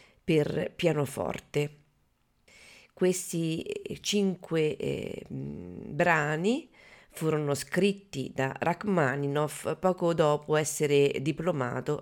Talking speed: 70 wpm